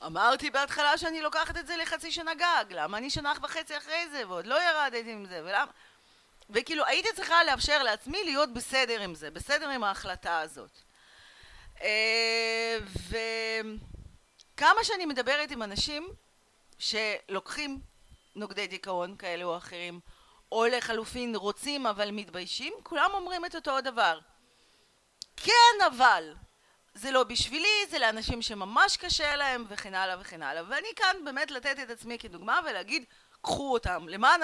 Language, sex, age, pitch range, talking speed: Hebrew, female, 40-59, 195-295 Hz, 140 wpm